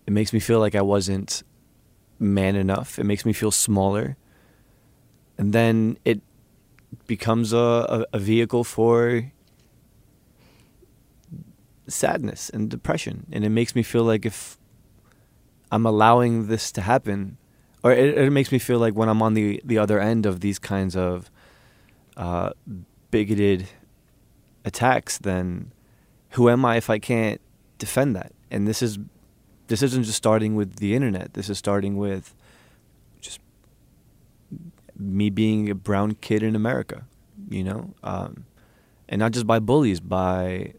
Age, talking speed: 20-39, 145 wpm